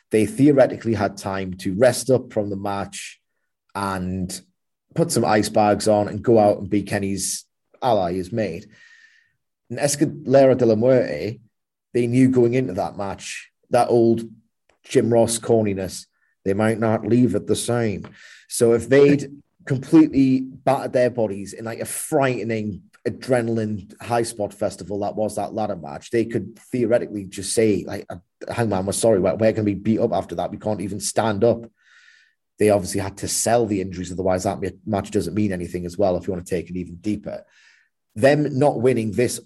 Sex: male